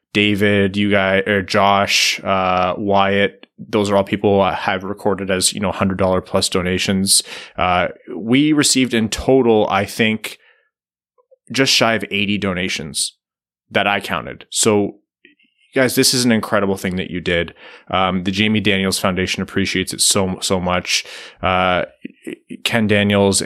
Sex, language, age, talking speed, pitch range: male, English, 20-39, 150 wpm, 95-110 Hz